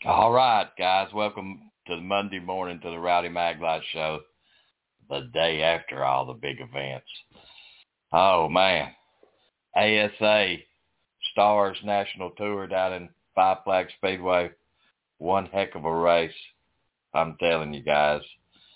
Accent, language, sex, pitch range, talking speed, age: American, English, male, 85-105 Hz, 130 wpm, 60-79